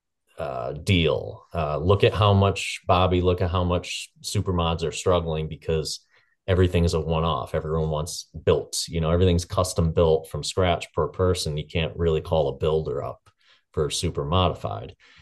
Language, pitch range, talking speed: English, 80-95 Hz, 170 wpm